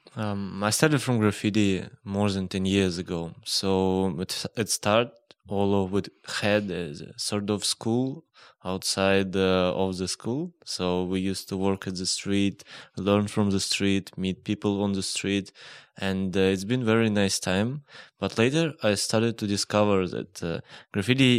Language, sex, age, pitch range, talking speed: English, male, 20-39, 95-105 Hz, 165 wpm